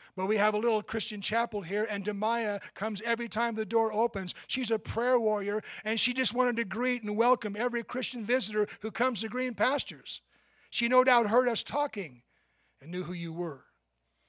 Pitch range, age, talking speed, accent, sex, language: 165-215 Hz, 60-79, 195 wpm, American, male, English